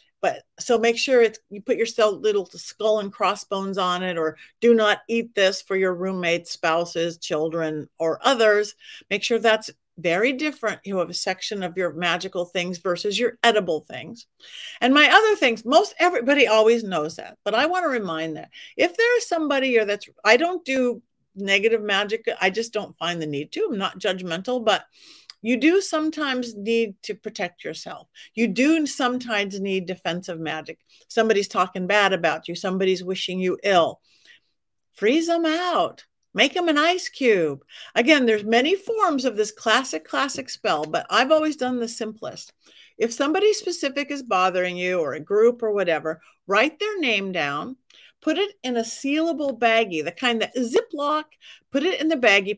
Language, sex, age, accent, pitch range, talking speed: English, female, 50-69, American, 190-285 Hz, 175 wpm